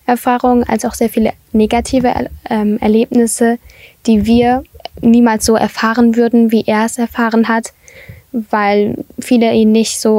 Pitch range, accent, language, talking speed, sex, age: 215-235 Hz, German, German, 140 wpm, female, 10-29